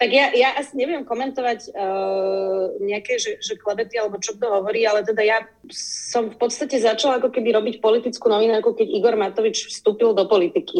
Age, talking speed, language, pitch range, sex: 30-49, 190 wpm, Czech, 190-230 Hz, female